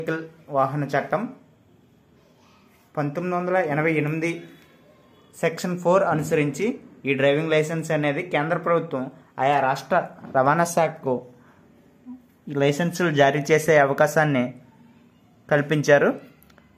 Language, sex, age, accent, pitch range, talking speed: Telugu, male, 20-39, native, 140-165 Hz, 80 wpm